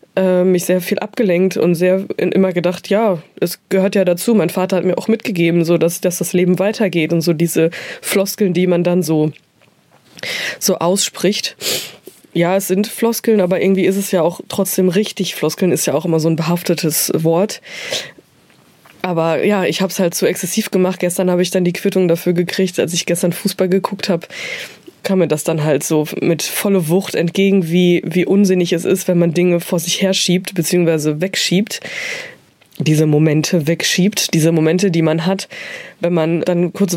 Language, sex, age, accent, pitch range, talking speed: German, female, 20-39, German, 170-195 Hz, 185 wpm